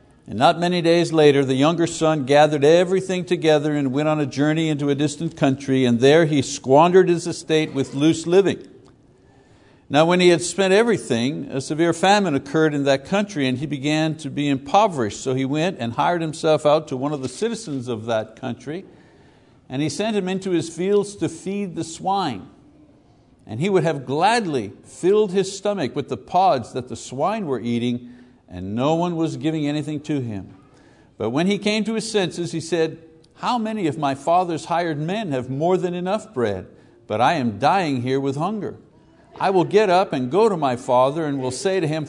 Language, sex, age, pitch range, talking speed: English, male, 60-79, 135-180 Hz, 200 wpm